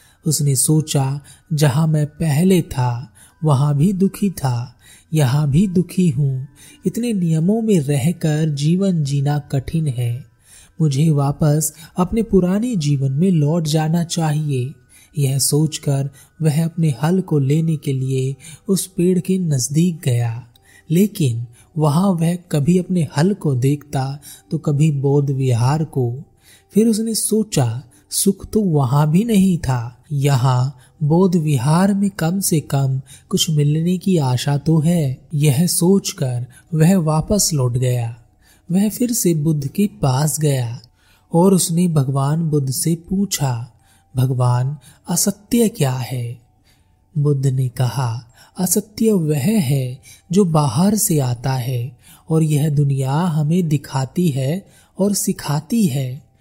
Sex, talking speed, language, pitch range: male, 130 wpm, Hindi, 130-175 Hz